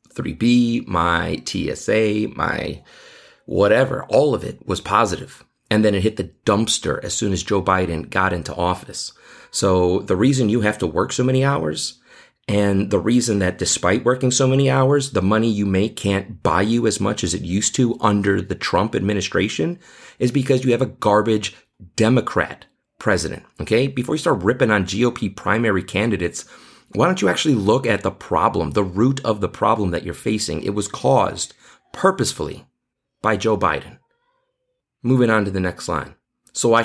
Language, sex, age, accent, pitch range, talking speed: English, male, 30-49, American, 95-120 Hz, 175 wpm